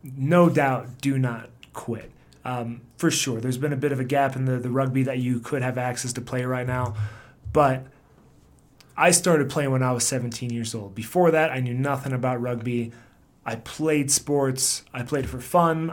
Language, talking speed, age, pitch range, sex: English, 200 wpm, 30-49, 120-145 Hz, male